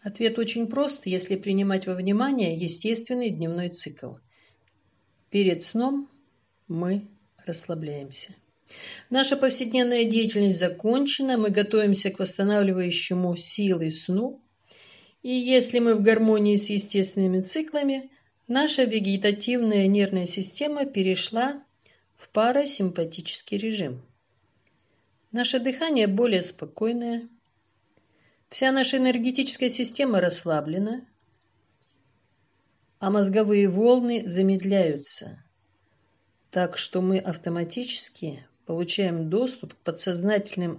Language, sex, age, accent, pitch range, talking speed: Russian, female, 50-69, native, 170-230 Hz, 90 wpm